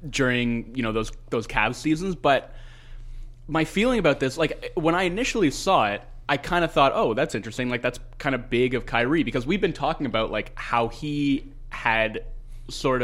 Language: English